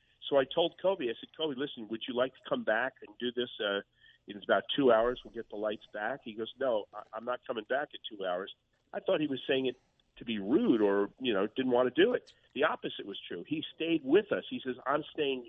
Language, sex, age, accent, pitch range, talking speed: English, male, 50-69, American, 110-160 Hz, 255 wpm